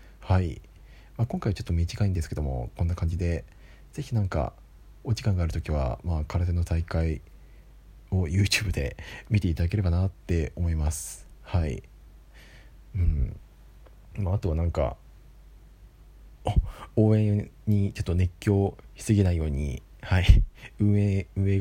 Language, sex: Japanese, male